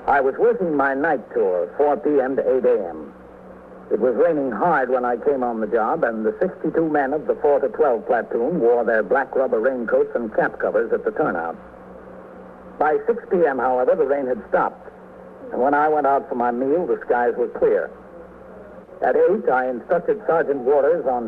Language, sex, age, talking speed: English, male, 60-79, 195 wpm